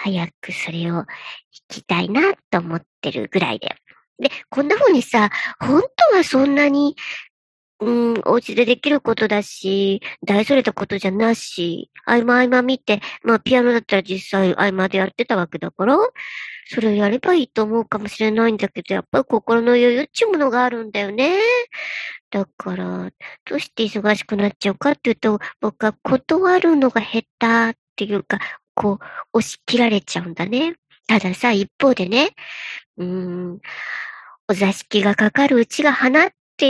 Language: Japanese